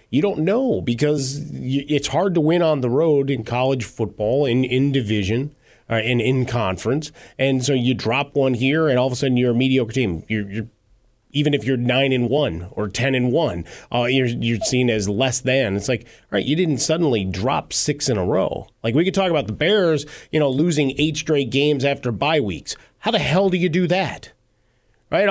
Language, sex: English, male